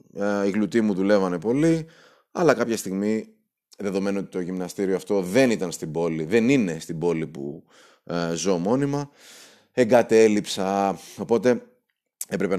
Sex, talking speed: male, 140 wpm